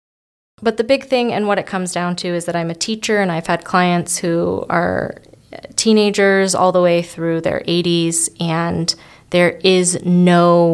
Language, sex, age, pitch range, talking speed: English, female, 20-39, 165-185 Hz, 180 wpm